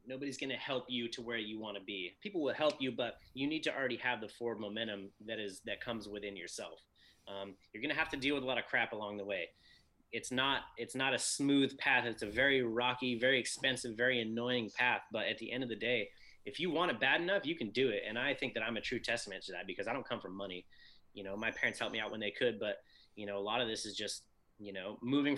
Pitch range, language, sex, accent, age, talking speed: 105-130 Hz, English, male, American, 30-49, 275 wpm